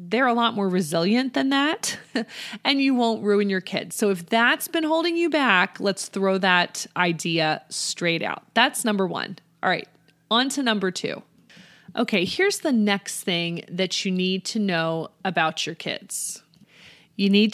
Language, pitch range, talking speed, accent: English, 180-245 Hz, 170 wpm, American